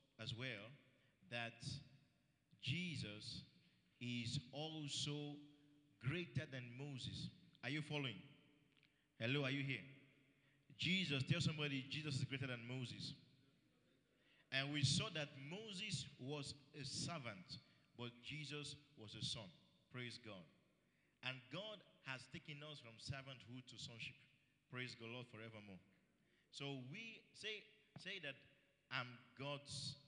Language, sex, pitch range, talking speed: English, male, 125-145 Hz, 120 wpm